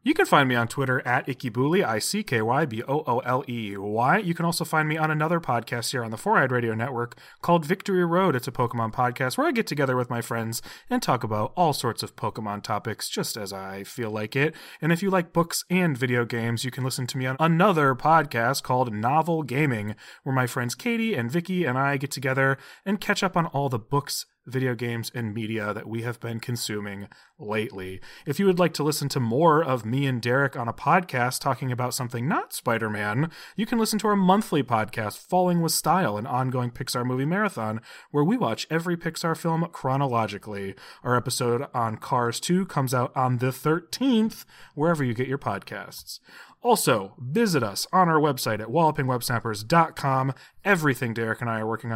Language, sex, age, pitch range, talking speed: English, male, 30-49, 115-160 Hz, 195 wpm